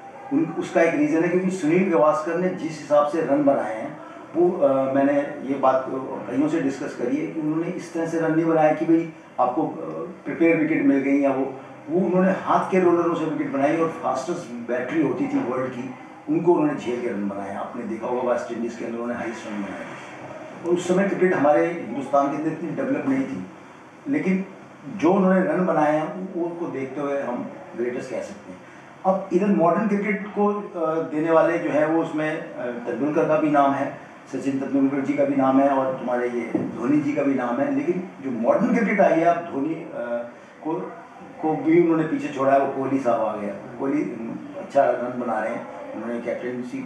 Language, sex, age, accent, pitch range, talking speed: Hindi, male, 40-59, native, 135-185 Hz, 200 wpm